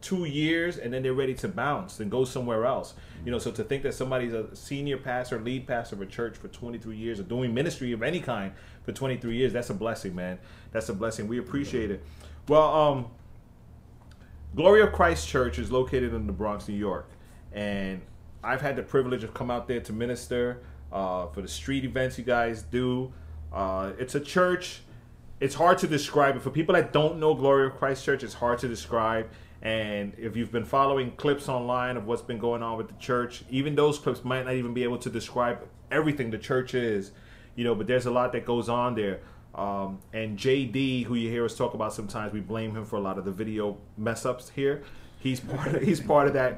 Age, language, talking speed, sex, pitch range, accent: 30-49, English, 220 wpm, male, 110-135 Hz, American